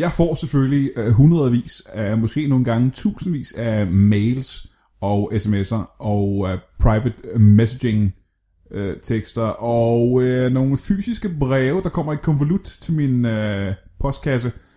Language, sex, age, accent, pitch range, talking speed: Danish, male, 20-39, native, 105-140 Hz, 110 wpm